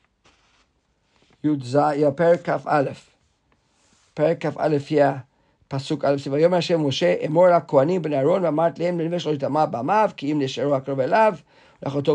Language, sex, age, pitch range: English, male, 50-69, 150-195 Hz